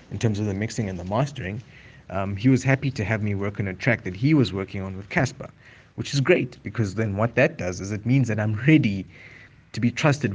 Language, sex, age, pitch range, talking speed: English, male, 30-49, 95-115 Hz, 250 wpm